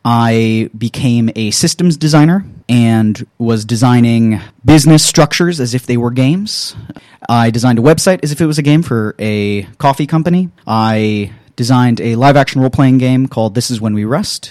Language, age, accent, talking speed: English, 30-49, American, 170 wpm